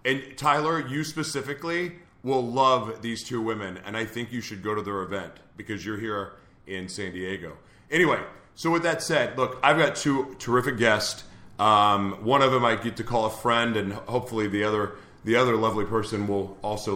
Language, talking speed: English, 195 wpm